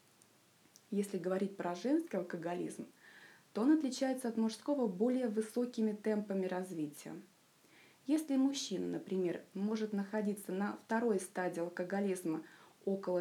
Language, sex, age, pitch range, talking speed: Russian, female, 20-39, 185-245 Hz, 110 wpm